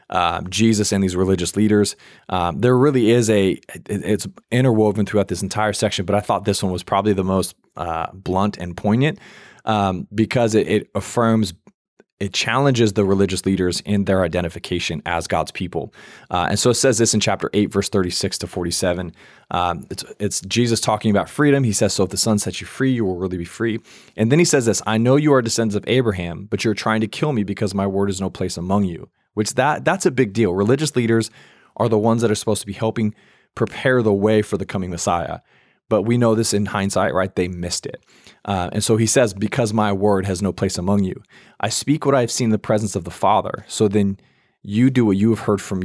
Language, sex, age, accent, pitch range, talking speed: English, male, 20-39, American, 95-115 Hz, 225 wpm